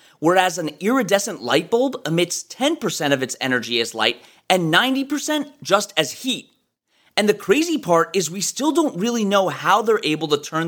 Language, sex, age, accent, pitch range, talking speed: English, male, 30-49, American, 155-260 Hz, 180 wpm